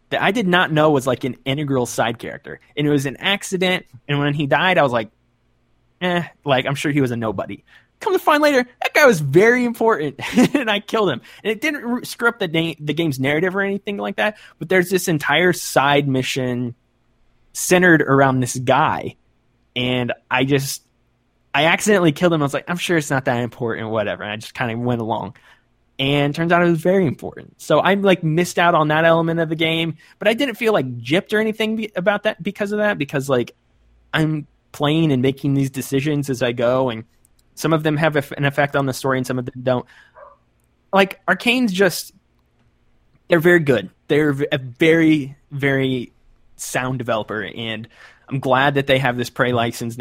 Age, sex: 20-39, male